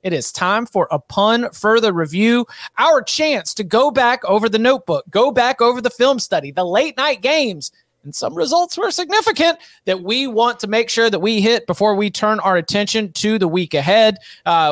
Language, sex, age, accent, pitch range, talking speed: English, male, 30-49, American, 175-220 Hz, 205 wpm